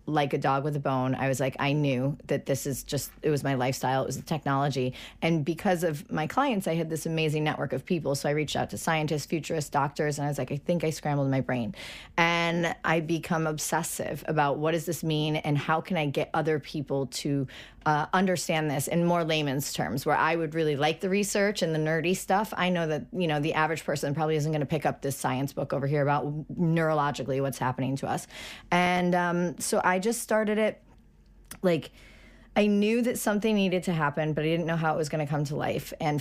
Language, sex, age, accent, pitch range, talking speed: English, female, 30-49, American, 145-165 Hz, 235 wpm